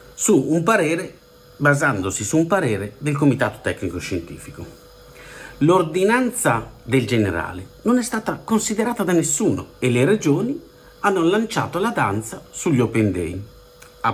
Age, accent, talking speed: 50-69, native, 130 wpm